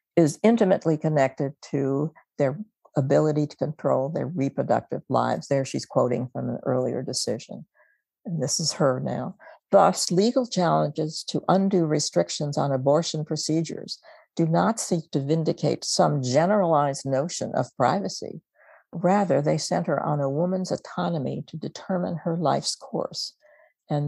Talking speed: 135 wpm